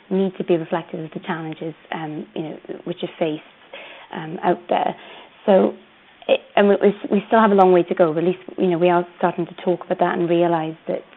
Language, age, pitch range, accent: English, 20-39, 170-190 Hz, British